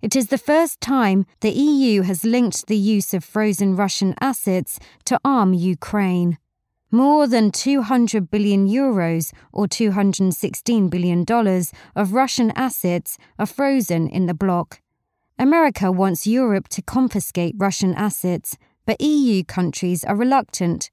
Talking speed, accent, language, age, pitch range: 130 wpm, British, English, 30-49, 180-245 Hz